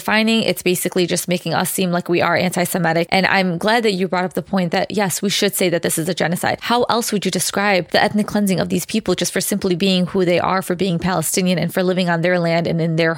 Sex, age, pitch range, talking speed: female, 20-39, 180-210 Hz, 275 wpm